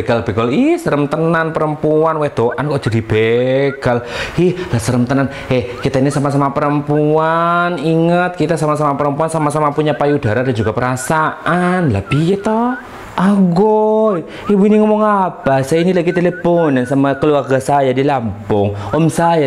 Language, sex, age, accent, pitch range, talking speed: Indonesian, male, 20-39, native, 120-165 Hz, 145 wpm